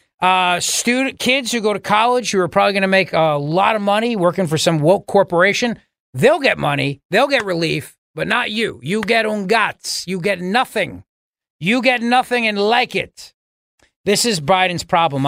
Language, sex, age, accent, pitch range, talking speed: English, male, 40-59, American, 150-195 Hz, 185 wpm